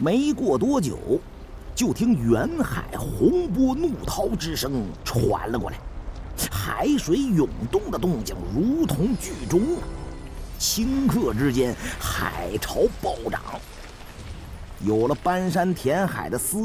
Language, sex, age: Chinese, male, 50-69